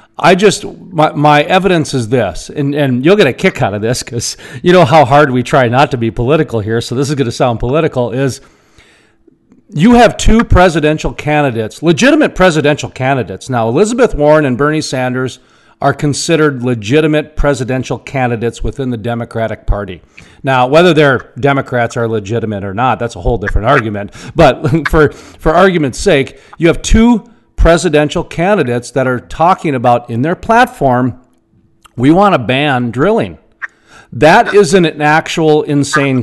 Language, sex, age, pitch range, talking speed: English, male, 40-59, 125-155 Hz, 165 wpm